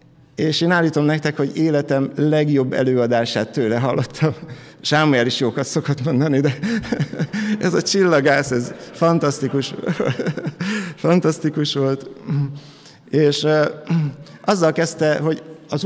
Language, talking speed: Hungarian, 105 wpm